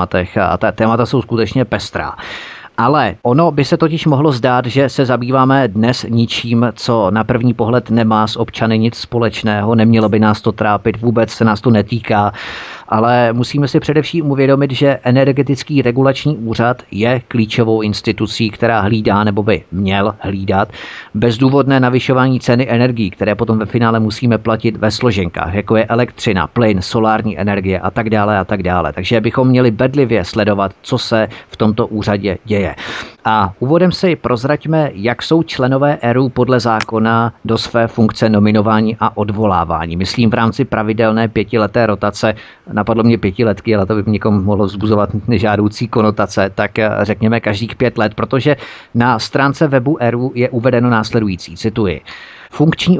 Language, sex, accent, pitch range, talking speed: Czech, male, native, 105-125 Hz, 155 wpm